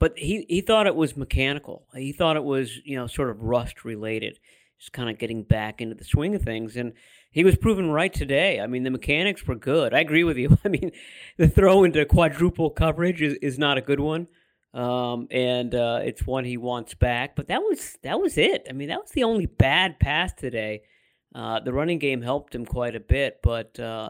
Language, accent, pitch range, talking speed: English, American, 120-150 Hz, 225 wpm